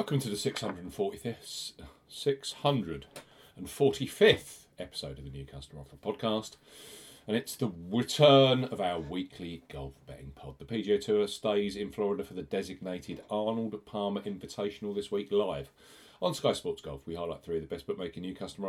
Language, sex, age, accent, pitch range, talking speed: English, male, 40-59, British, 90-130 Hz, 155 wpm